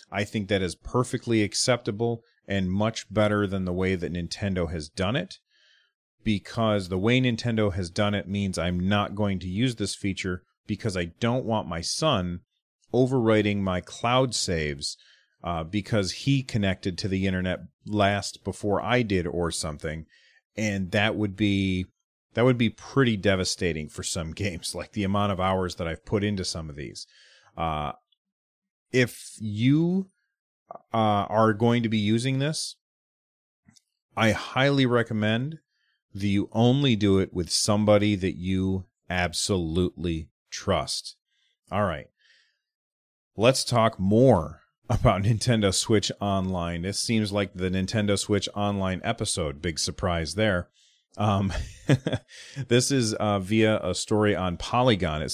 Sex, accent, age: male, American, 30-49